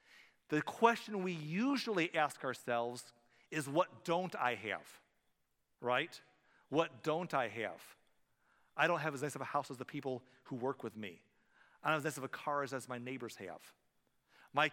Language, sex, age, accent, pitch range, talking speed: English, male, 40-59, American, 135-180 Hz, 180 wpm